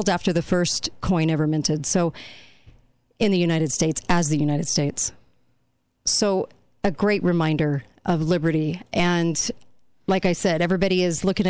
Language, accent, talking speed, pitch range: English, American, 145 wpm, 160-190 Hz